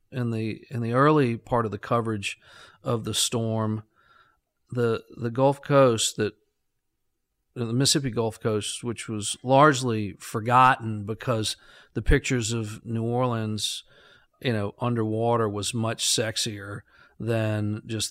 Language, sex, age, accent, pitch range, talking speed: English, male, 50-69, American, 105-120 Hz, 130 wpm